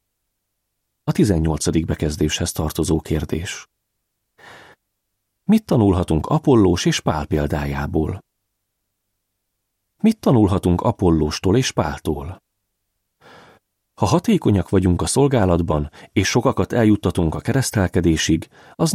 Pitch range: 85-120 Hz